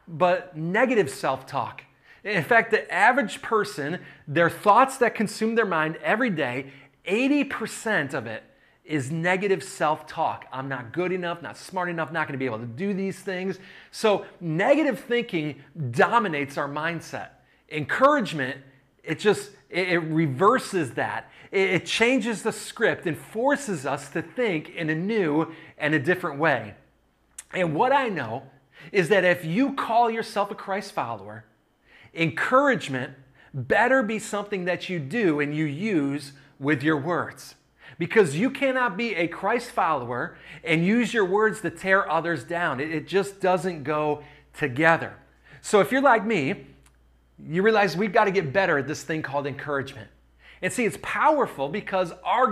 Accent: American